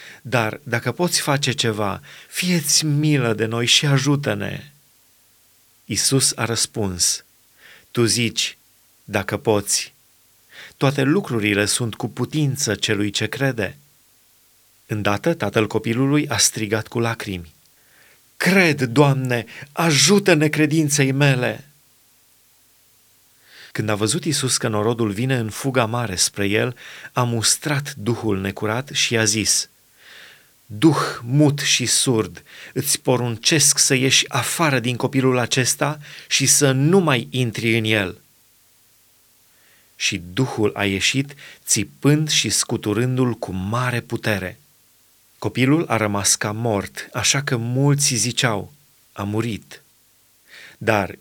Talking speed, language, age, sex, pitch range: 115 wpm, Romanian, 30-49, male, 110-140 Hz